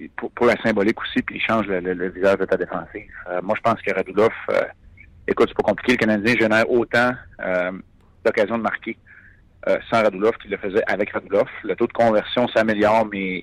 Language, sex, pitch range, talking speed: French, male, 95-110 Hz, 210 wpm